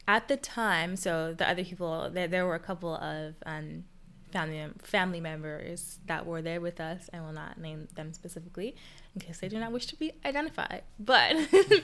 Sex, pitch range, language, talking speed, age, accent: female, 160-200 Hz, English, 195 wpm, 10-29, American